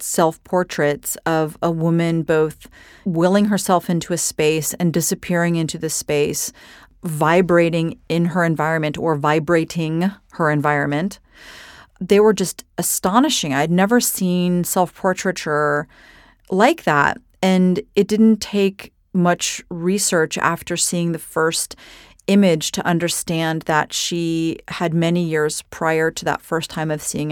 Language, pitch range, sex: English, 160-185 Hz, female